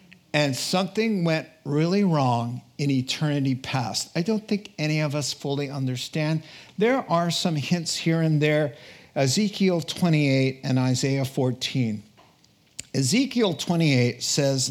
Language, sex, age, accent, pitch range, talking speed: English, male, 50-69, American, 135-175 Hz, 125 wpm